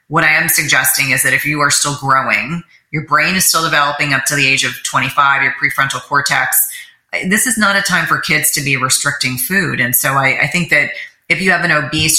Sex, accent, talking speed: female, American, 230 wpm